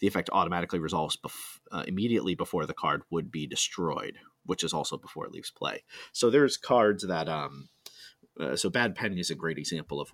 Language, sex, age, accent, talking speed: English, male, 30-49, American, 200 wpm